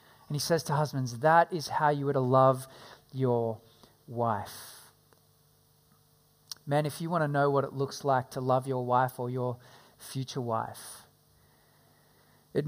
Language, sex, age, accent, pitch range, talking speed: English, male, 40-59, Australian, 135-180 Hz, 155 wpm